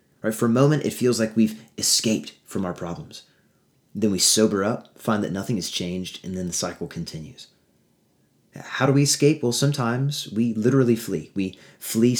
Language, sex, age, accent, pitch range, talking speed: English, male, 30-49, American, 100-125 Hz, 175 wpm